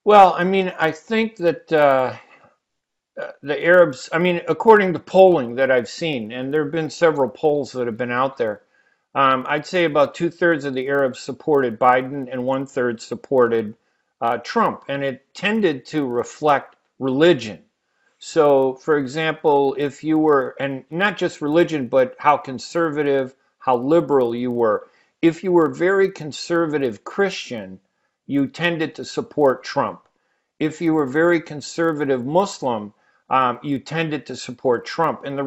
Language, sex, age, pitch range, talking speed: Arabic, male, 50-69, 135-175 Hz, 155 wpm